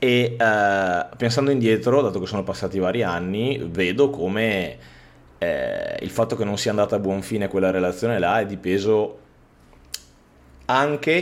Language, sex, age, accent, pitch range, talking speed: Italian, male, 20-39, native, 95-120 Hz, 155 wpm